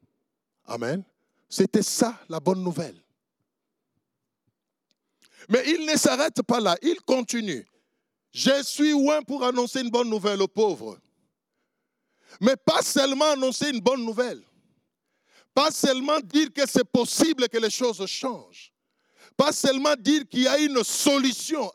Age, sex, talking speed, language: 50-69, male, 135 wpm, French